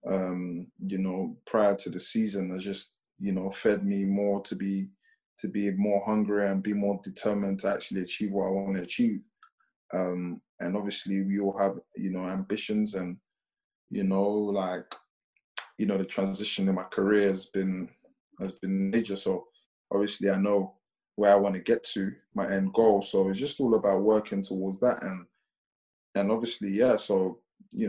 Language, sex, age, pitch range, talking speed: English, male, 20-39, 95-105 Hz, 180 wpm